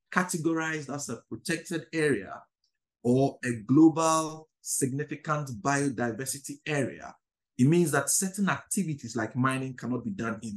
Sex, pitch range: male, 120-150 Hz